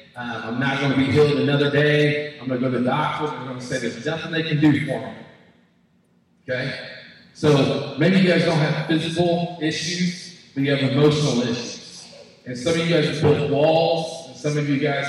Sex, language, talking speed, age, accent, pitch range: male, English, 215 wpm, 40-59, American, 135-160 Hz